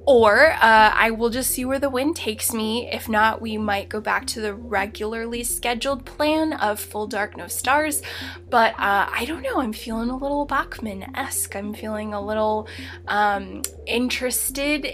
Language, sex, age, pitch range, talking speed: English, female, 10-29, 210-265 Hz, 175 wpm